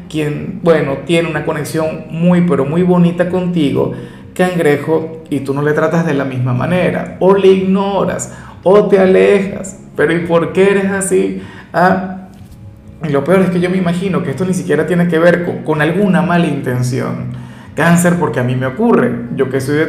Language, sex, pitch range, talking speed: Spanish, male, 145-185 Hz, 190 wpm